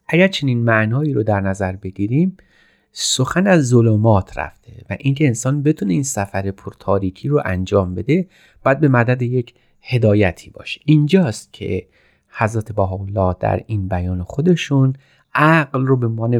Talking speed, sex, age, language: 145 wpm, male, 30-49, Persian